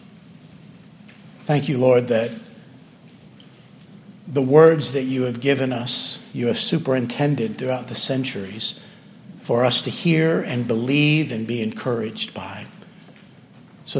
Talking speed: 120 wpm